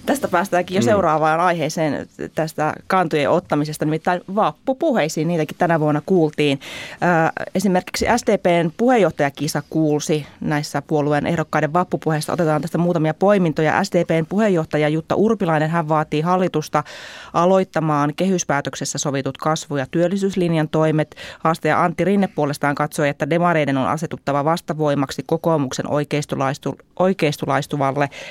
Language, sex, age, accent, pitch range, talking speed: Finnish, female, 20-39, native, 150-180 Hz, 110 wpm